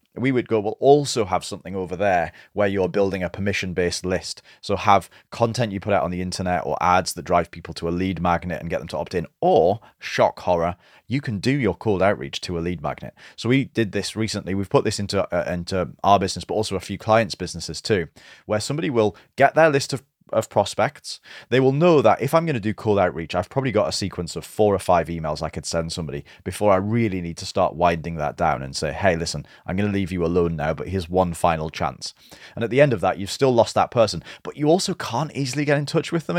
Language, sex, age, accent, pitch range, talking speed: English, male, 30-49, British, 90-120 Hz, 250 wpm